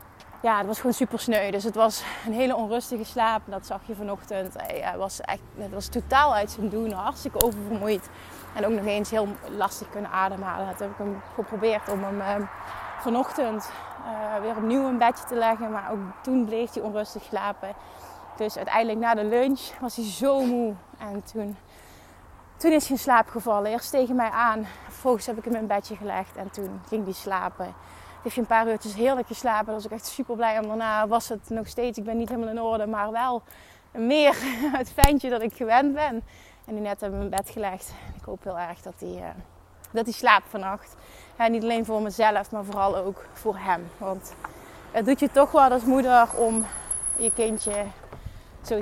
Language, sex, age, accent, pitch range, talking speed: Dutch, female, 20-39, Dutch, 205-240 Hz, 205 wpm